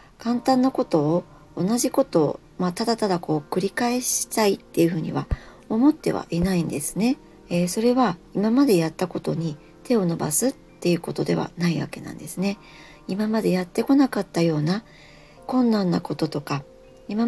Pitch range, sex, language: 165-230 Hz, male, Japanese